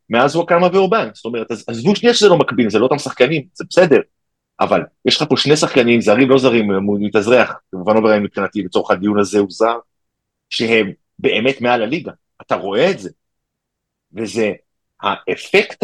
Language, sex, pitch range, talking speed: Hebrew, male, 120-170 Hz, 170 wpm